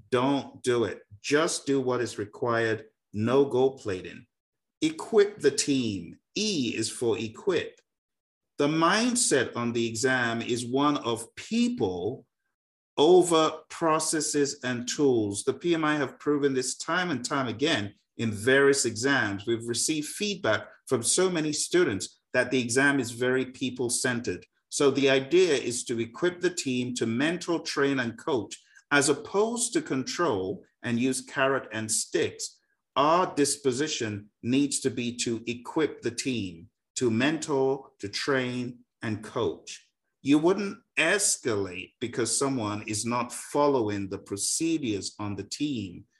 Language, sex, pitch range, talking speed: English, male, 115-160 Hz, 140 wpm